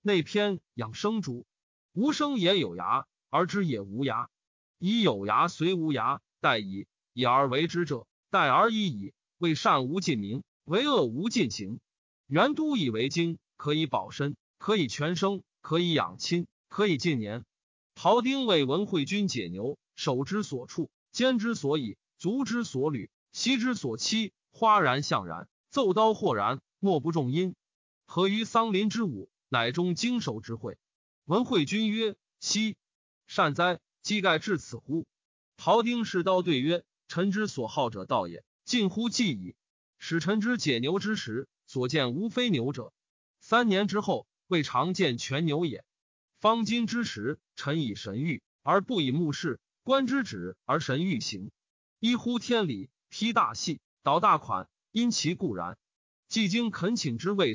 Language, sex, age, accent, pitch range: Chinese, male, 30-49, native, 150-220 Hz